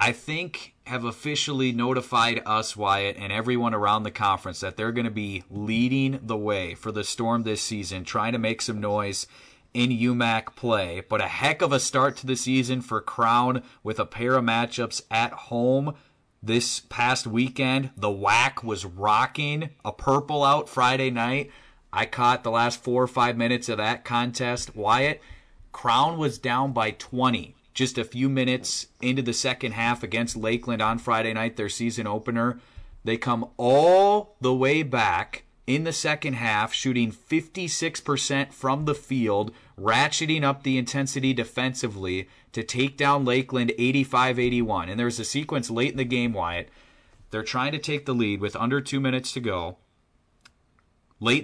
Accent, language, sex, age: American, English, male, 30-49